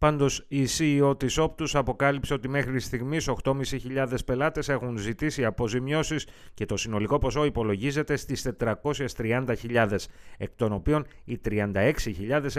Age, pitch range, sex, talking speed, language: 30-49, 105-140 Hz, male, 125 wpm, Greek